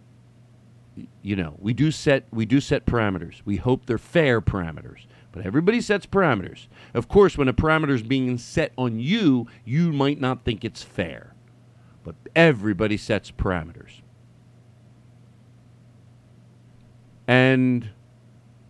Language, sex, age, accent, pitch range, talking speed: English, male, 40-59, American, 120-160 Hz, 125 wpm